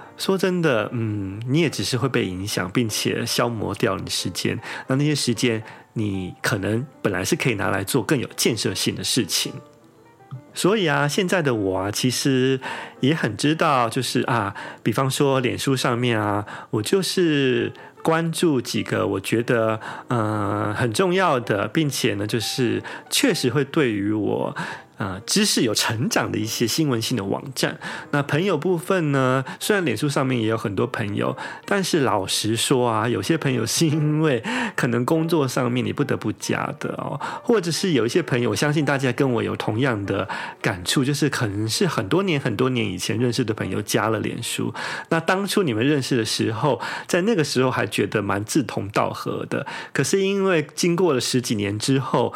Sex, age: male, 30-49